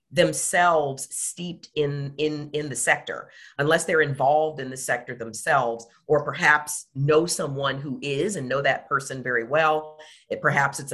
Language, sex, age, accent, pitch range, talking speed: English, female, 40-59, American, 130-170 Hz, 160 wpm